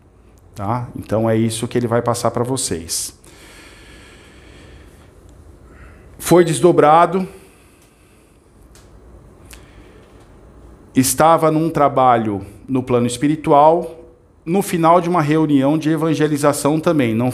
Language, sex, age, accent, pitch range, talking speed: Portuguese, male, 50-69, Brazilian, 110-150 Hz, 90 wpm